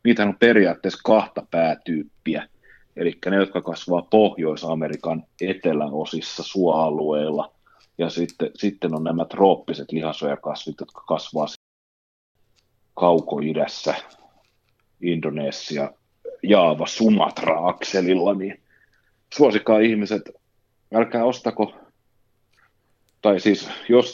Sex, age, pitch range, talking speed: male, 40-59, 80-110 Hz, 85 wpm